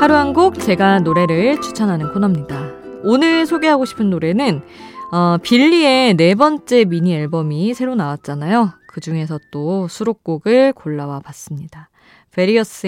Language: Korean